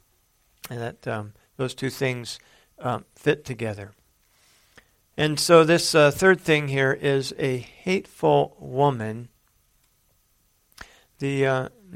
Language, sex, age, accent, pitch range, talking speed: English, male, 50-69, American, 125-155 Hz, 110 wpm